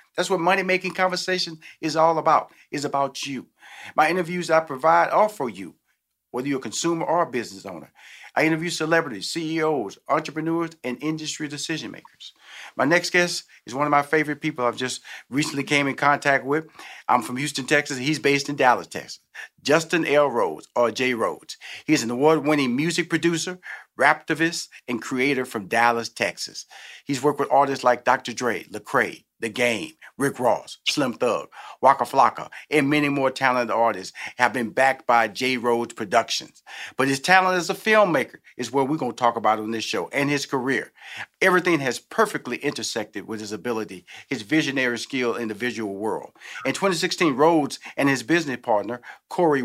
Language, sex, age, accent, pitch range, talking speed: English, male, 40-59, American, 125-165 Hz, 175 wpm